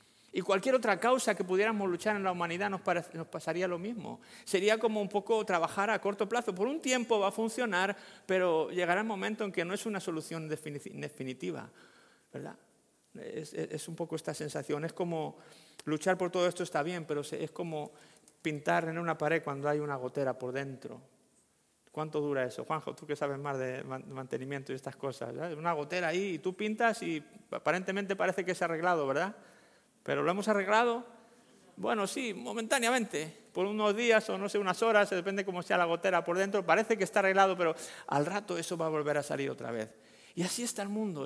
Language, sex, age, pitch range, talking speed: Spanish, male, 50-69, 155-205 Hz, 205 wpm